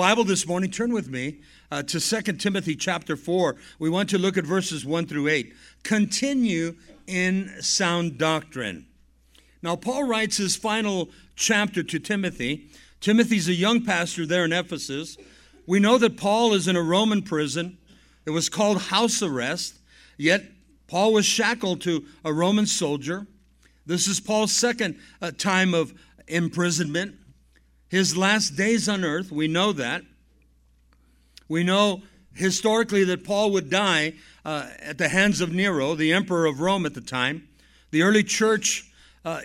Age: 50-69